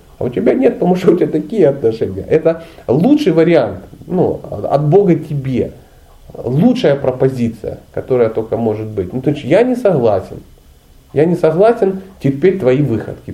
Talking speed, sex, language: 155 wpm, male, Russian